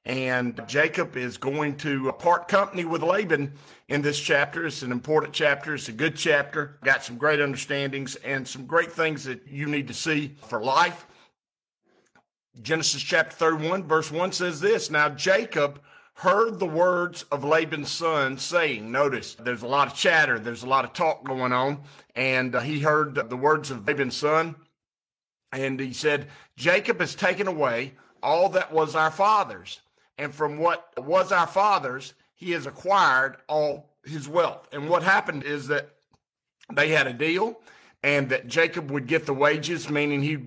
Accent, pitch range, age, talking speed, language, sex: American, 135-165 Hz, 50-69, 170 wpm, English, male